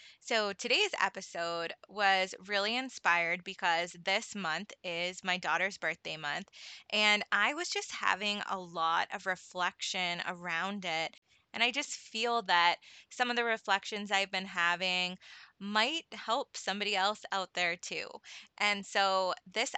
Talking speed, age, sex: 145 wpm, 20-39, female